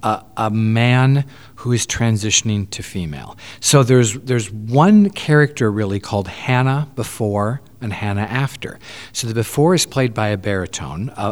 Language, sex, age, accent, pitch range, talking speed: English, male, 50-69, American, 105-130 Hz, 155 wpm